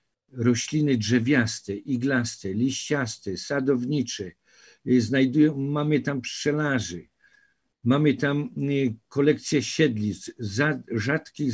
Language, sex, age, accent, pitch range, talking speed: Polish, male, 50-69, native, 120-150 Hz, 80 wpm